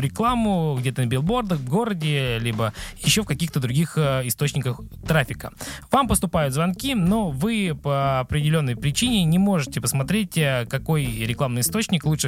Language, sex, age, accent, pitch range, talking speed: Russian, male, 20-39, native, 130-180 Hz, 135 wpm